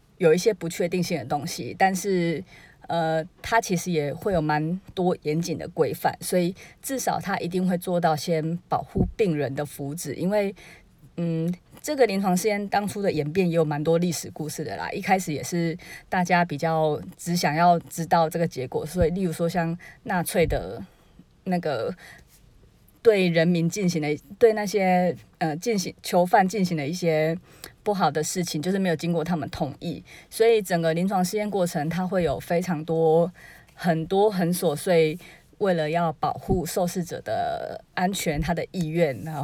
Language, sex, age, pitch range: Chinese, female, 20-39, 160-190 Hz